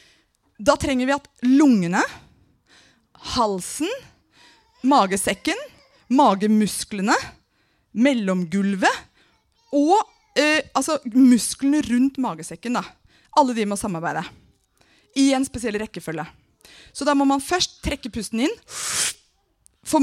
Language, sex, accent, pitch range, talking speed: English, female, Swedish, 225-300 Hz, 95 wpm